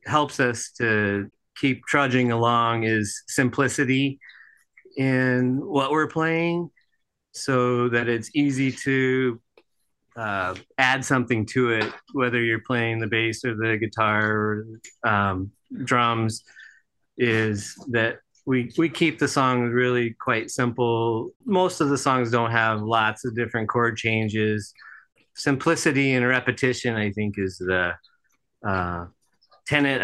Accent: American